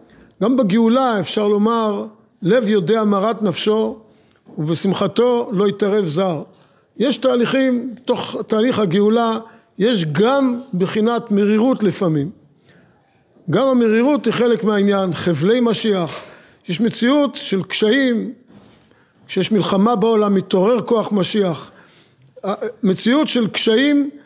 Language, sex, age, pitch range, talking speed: Hebrew, male, 50-69, 195-235 Hz, 105 wpm